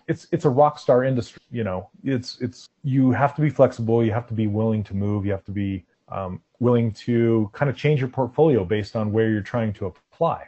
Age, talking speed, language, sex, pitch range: 30-49, 235 wpm, English, male, 105-135 Hz